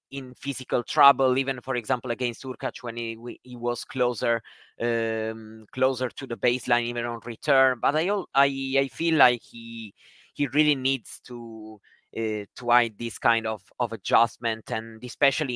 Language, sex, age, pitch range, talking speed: English, male, 20-39, 115-140 Hz, 160 wpm